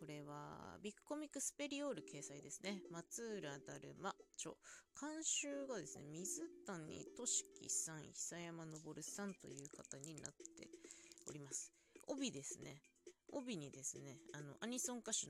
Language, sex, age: Japanese, female, 20-39